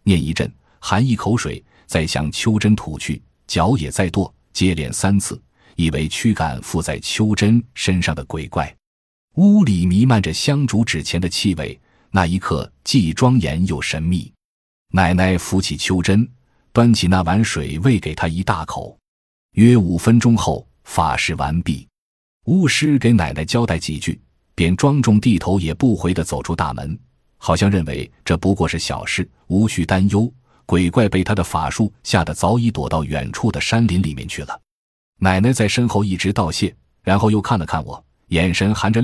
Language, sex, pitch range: Chinese, male, 80-110 Hz